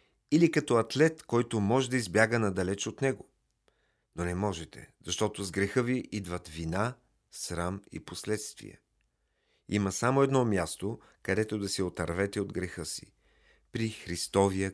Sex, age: male, 40-59